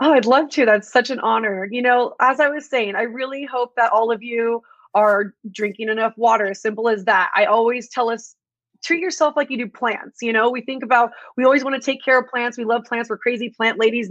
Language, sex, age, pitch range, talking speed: English, female, 30-49, 205-245 Hz, 250 wpm